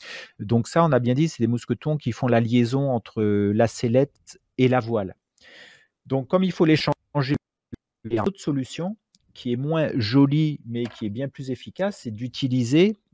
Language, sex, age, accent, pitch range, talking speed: French, male, 40-59, French, 115-150 Hz, 195 wpm